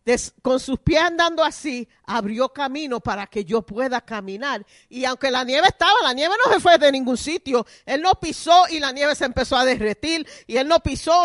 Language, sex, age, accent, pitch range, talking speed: Spanish, female, 40-59, American, 275-385 Hz, 210 wpm